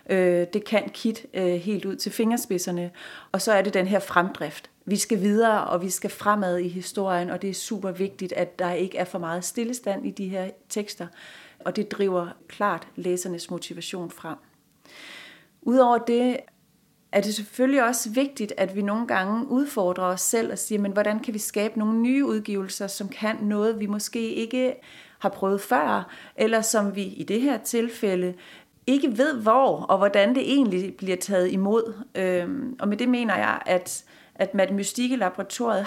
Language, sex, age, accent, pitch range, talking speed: Danish, female, 30-49, native, 190-235 Hz, 170 wpm